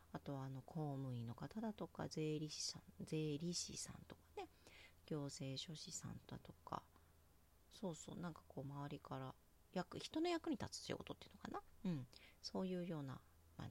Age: 40-59